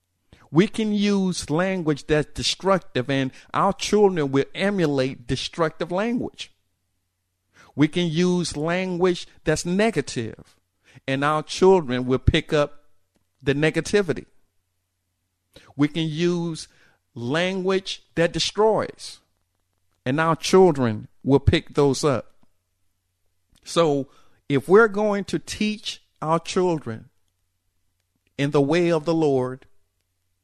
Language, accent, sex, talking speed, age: English, American, male, 105 wpm, 50-69